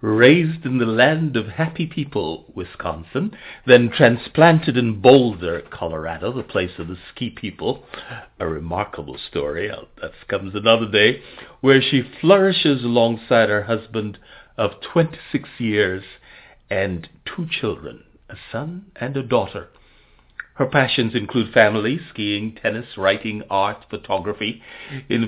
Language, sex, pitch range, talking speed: English, male, 105-140 Hz, 125 wpm